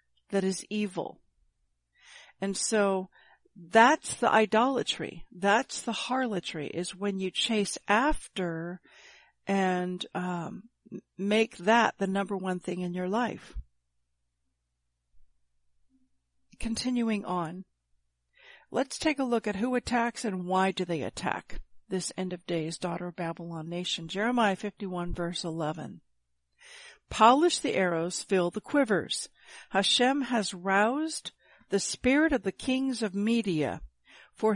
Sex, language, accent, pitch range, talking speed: female, English, American, 175-225 Hz, 120 wpm